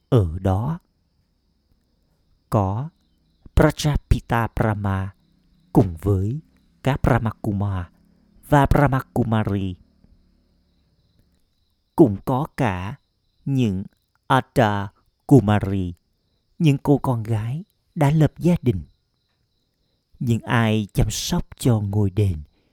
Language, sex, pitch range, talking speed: Vietnamese, male, 95-130 Hz, 85 wpm